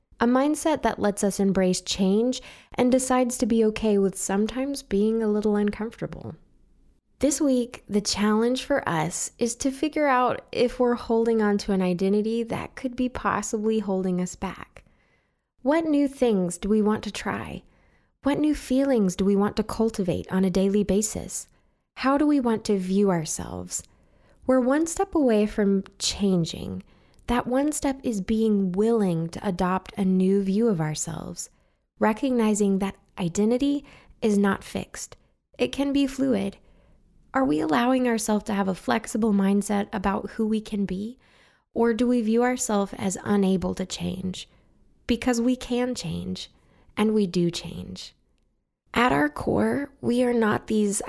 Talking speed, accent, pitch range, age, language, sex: 160 wpm, American, 195-245 Hz, 20-39, English, female